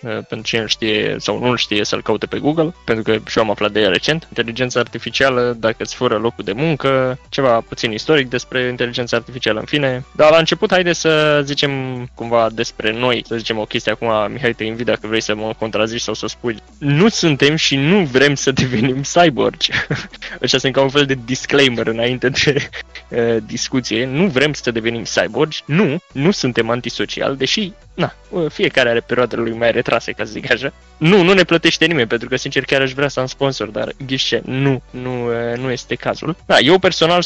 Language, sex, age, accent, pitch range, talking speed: Romanian, male, 20-39, native, 115-145 Hz, 190 wpm